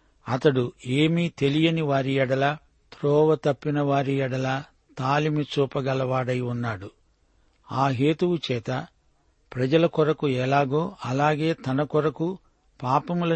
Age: 60-79